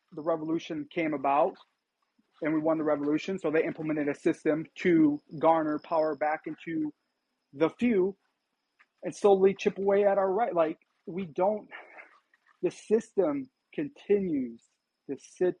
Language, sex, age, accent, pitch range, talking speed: English, male, 30-49, American, 145-185 Hz, 140 wpm